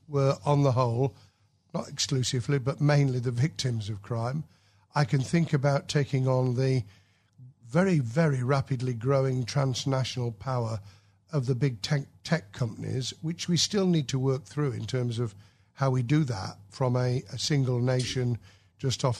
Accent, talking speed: British, 160 wpm